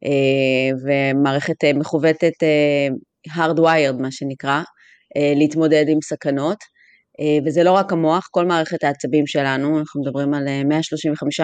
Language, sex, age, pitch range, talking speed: Hebrew, female, 30-49, 150-170 Hz, 105 wpm